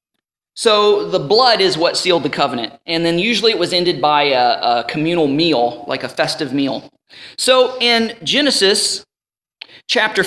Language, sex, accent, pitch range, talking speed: English, male, American, 155-235 Hz, 160 wpm